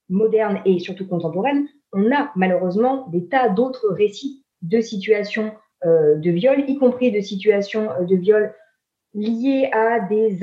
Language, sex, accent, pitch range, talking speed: English, female, French, 195-270 Hz, 140 wpm